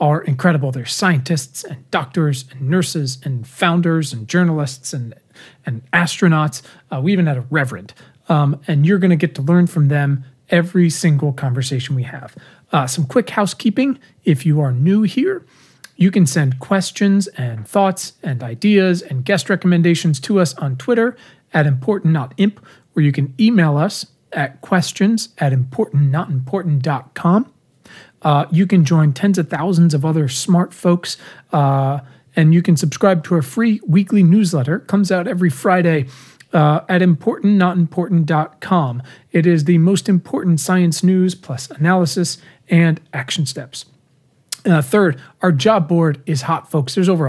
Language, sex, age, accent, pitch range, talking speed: English, male, 40-59, American, 145-185 Hz, 155 wpm